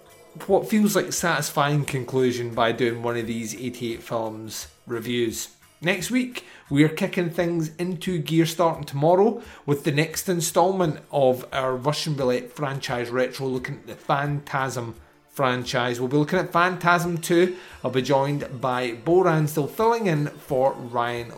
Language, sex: English, male